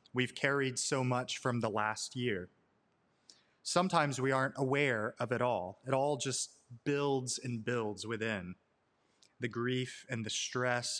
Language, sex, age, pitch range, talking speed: English, male, 30-49, 120-150 Hz, 145 wpm